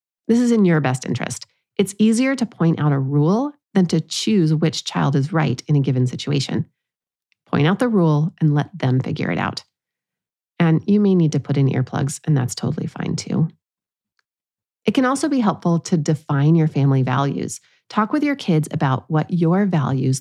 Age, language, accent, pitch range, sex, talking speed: 30-49, English, American, 145-205 Hz, female, 195 wpm